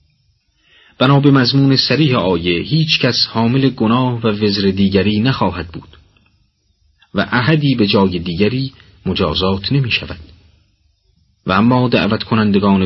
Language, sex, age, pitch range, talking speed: Persian, male, 40-59, 95-125 Hz, 115 wpm